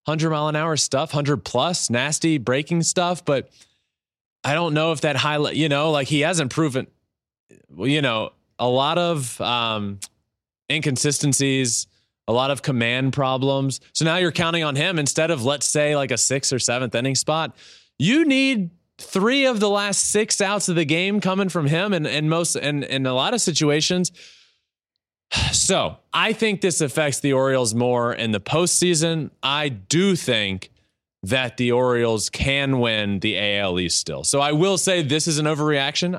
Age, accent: 20-39, American